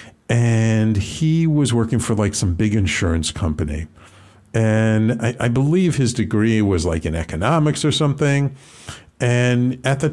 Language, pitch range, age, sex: English, 100-135 Hz, 50-69, male